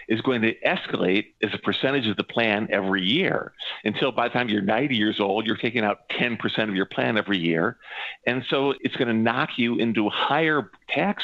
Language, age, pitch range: English, 50-69, 100-125 Hz